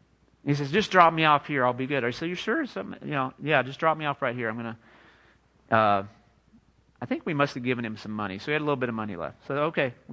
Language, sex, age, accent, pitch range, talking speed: English, male, 40-59, American, 125-155 Hz, 285 wpm